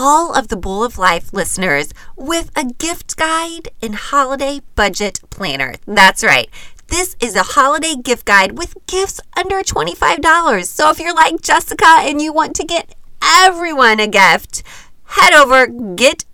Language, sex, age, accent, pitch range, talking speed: English, female, 30-49, American, 215-340 Hz, 160 wpm